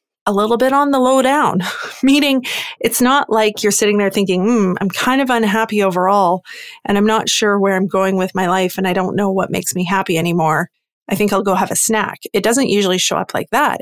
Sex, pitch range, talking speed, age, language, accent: female, 190-225 Hz, 235 wpm, 30-49, English, American